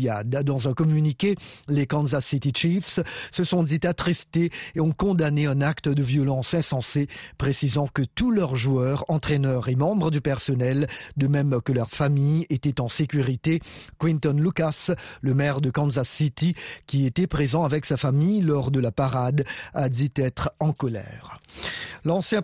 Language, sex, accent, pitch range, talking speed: French, male, French, 135-165 Hz, 160 wpm